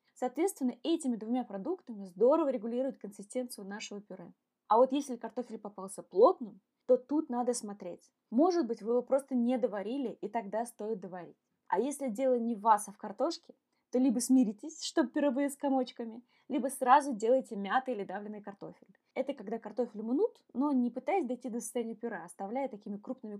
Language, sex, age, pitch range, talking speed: Russian, female, 20-39, 220-270 Hz, 175 wpm